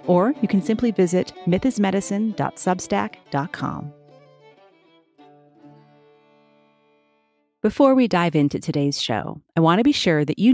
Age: 30-49